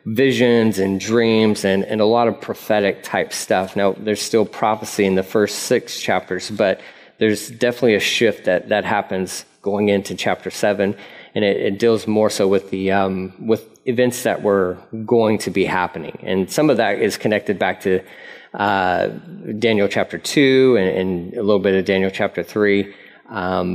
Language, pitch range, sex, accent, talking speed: English, 100-115 Hz, male, American, 180 wpm